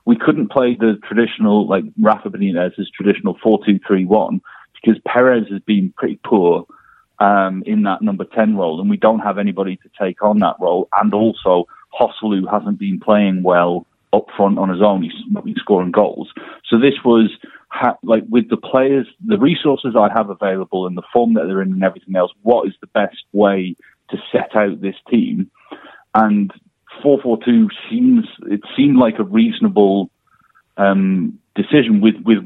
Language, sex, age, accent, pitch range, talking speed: English, male, 30-49, British, 95-135 Hz, 170 wpm